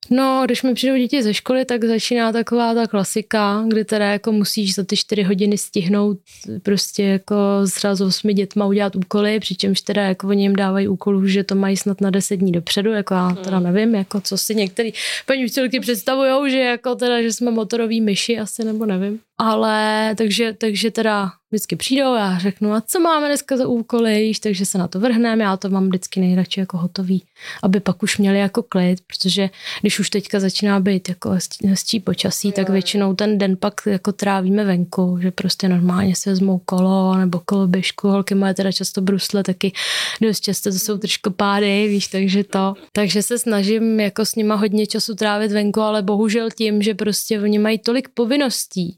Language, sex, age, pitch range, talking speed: Czech, female, 20-39, 195-220 Hz, 190 wpm